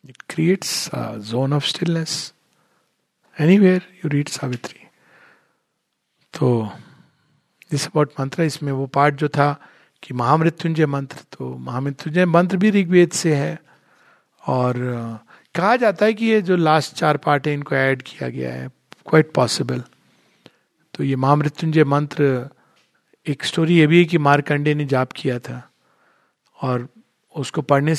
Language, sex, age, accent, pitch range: Hindi, male, 50-69, native, 140-190 Hz